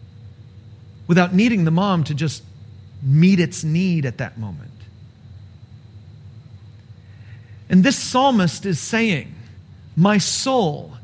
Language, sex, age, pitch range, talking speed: English, male, 40-59, 110-170 Hz, 105 wpm